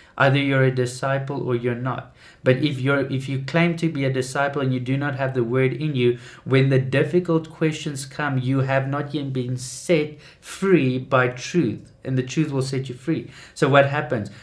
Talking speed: 210 wpm